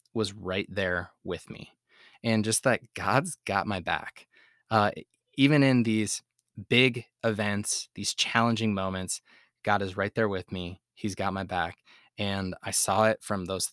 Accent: American